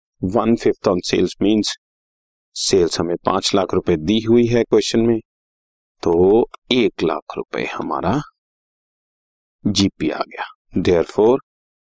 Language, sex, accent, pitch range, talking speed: Hindi, male, native, 95-135 Hz, 120 wpm